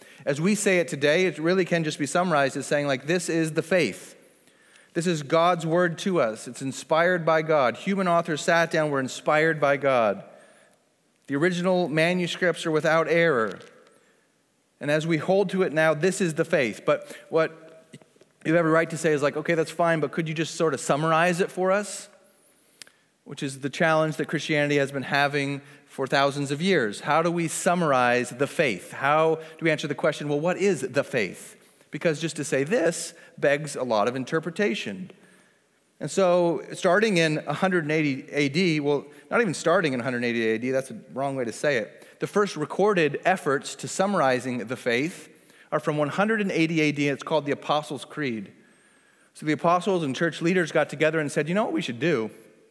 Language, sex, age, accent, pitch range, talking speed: English, male, 30-49, American, 145-175 Hz, 195 wpm